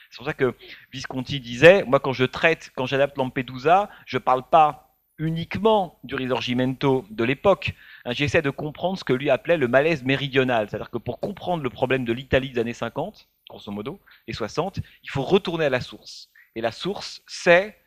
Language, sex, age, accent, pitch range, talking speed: French, male, 30-49, French, 120-160 Hz, 190 wpm